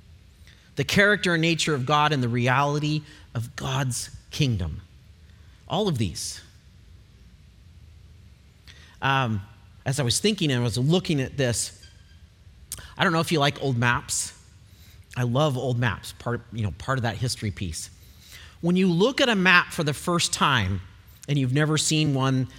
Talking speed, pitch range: 155 wpm, 100-155 Hz